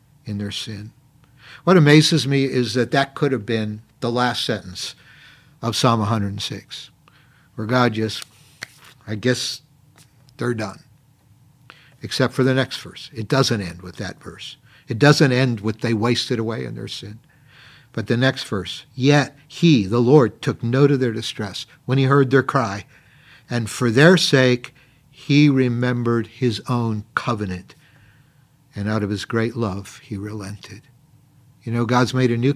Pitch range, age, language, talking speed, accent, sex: 115-140 Hz, 60-79, English, 160 wpm, American, male